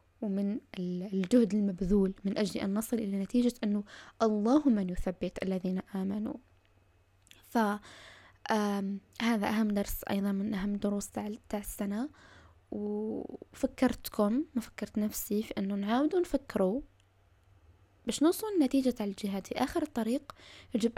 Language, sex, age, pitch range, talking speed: Arabic, female, 10-29, 190-230 Hz, 125 wpm